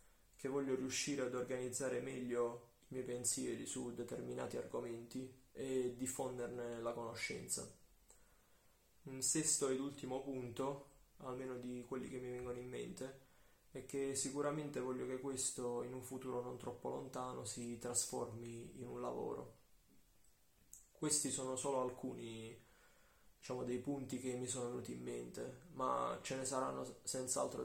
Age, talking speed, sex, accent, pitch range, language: 20-39, 135 wpm, male, native, 120-130 Hz, Italian